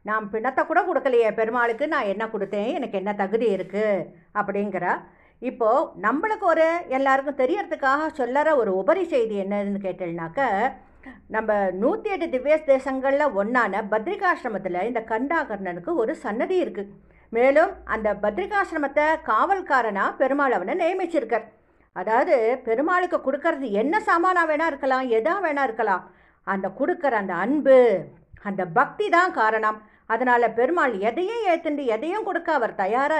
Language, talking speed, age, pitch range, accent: English, 125 wpm, 50-69, 210-300 Hz, Indian